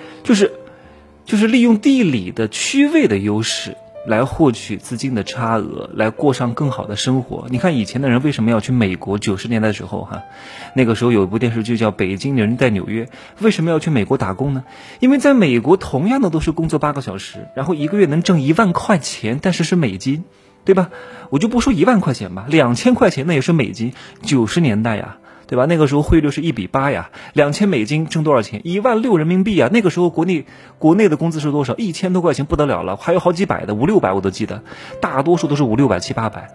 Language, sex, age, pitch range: Chinese, male, 20-39, 110-165 Hz